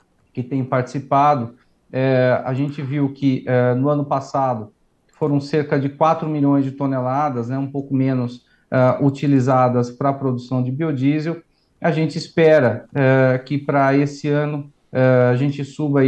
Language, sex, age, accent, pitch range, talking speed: Portuguese, male, 40-59, Brazilian, 130-150 Hz, 155 wpm